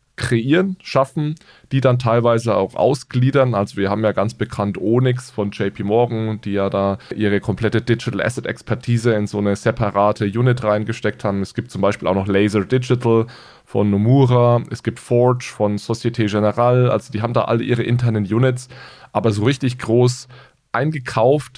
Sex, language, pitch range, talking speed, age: male, German, 105-125 Hz, 170 wpm, 20-39